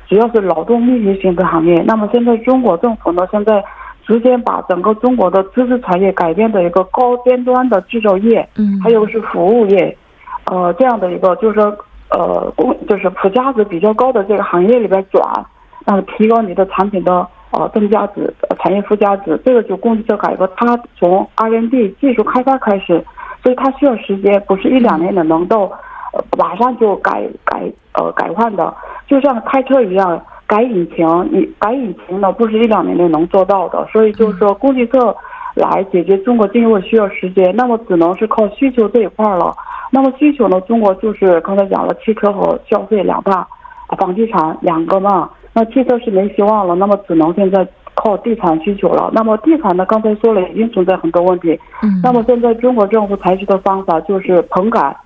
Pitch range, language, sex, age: 190-240 Hz, Korean, female, 50-69